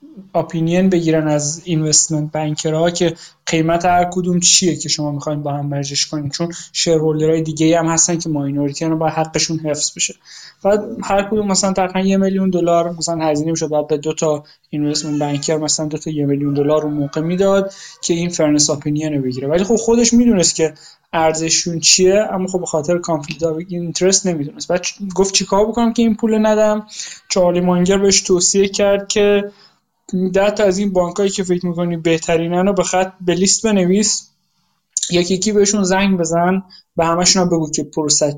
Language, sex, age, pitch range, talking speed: Persian, male, 20-39, 160-195 Hz, 180 wpm